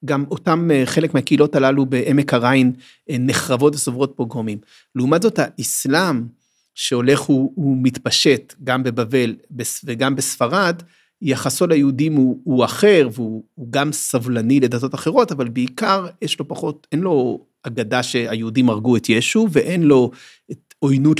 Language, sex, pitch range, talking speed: Hebrew, male, 130-200 Hz, 125 wpm